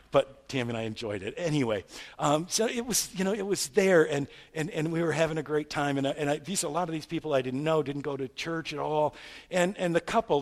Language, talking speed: English, 275 wpm